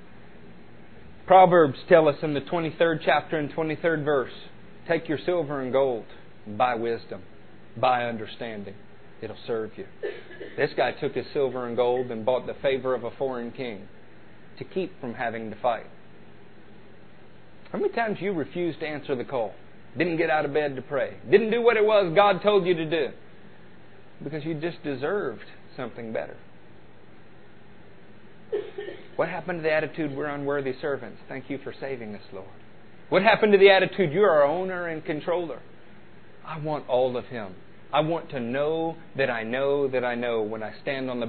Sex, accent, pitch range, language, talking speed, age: male, American, 125-165 Hz, English, 175 wpm, 40-59